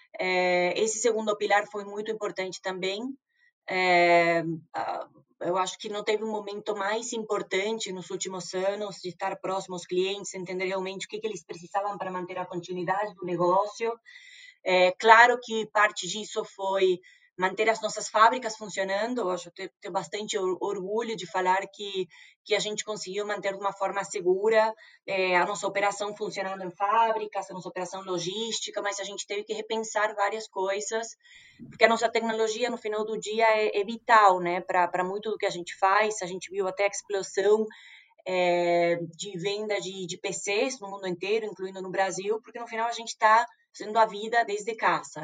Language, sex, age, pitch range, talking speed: Portuguese, female, 20-39, 185-220 Hz, 175 wpm